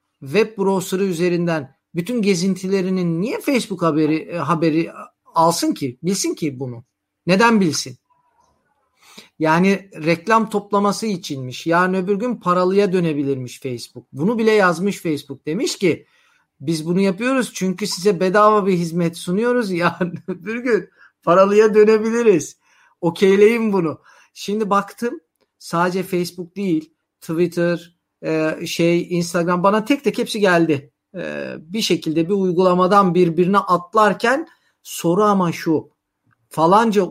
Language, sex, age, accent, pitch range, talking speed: Turkish, male, 50-69, native, 160-210 Hz, 120 wpm